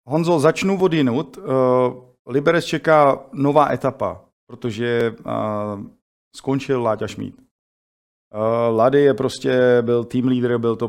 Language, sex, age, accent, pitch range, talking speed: Czech, male, 40-59, native, 100-120 Hz, 115 wpm